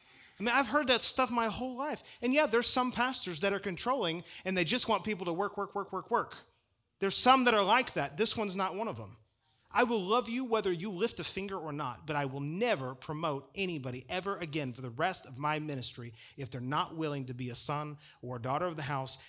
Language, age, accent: English, 30-49, American